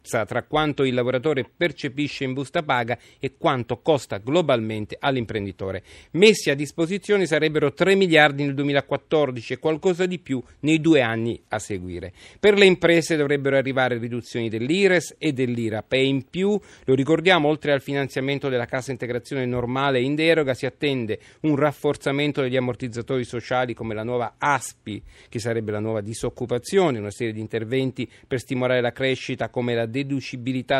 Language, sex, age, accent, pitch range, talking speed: Italian, male, 40-59, native, 120-150 Hz, 155 wpm